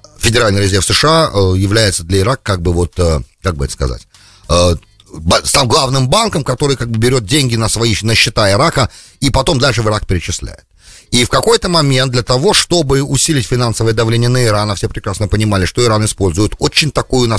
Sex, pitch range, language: male, 100-135 Hz, English